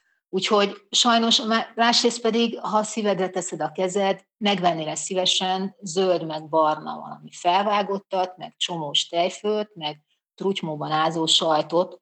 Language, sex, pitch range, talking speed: Hungarian, female, 160-200 Hz, 115 wpm